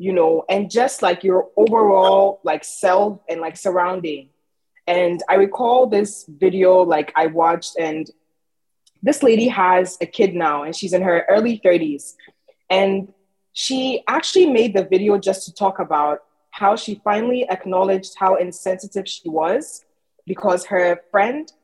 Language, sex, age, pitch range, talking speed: English, female, 20-39, 175-225 Hz, 150 wpm